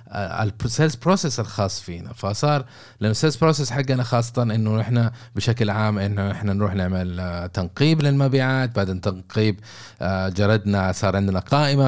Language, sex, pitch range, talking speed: Arabic, male, 100-125 Hz, 130 wpm